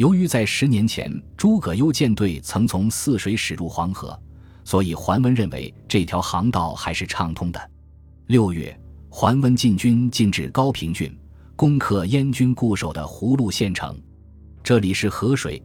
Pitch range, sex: 85-115 Hz, male